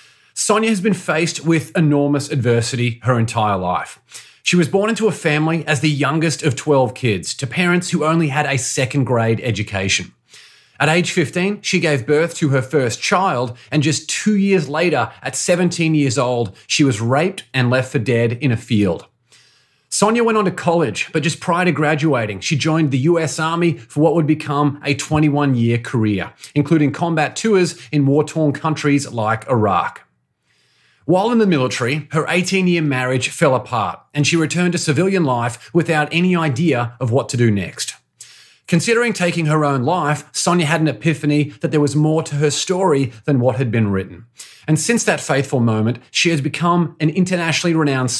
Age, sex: 30-49, male